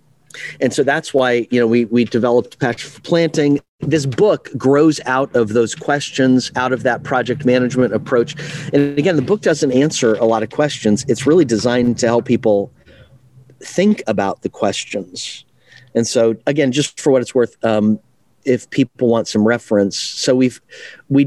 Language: English